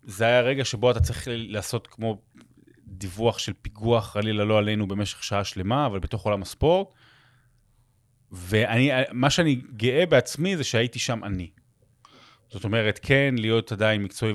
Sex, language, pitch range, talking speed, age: male, Hebrew, 105-130 Hz, 145 wpm, 30-49